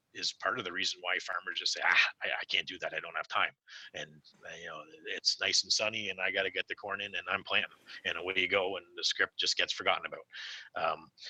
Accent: American